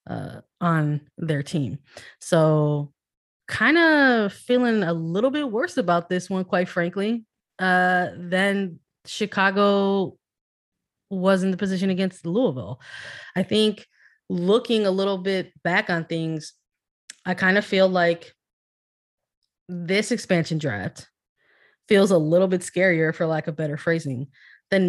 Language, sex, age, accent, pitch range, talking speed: English, female, 20-39, American, 160-190 Hz, 130 wpm